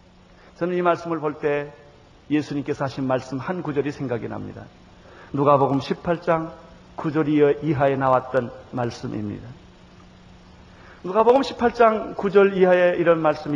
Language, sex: Korean, male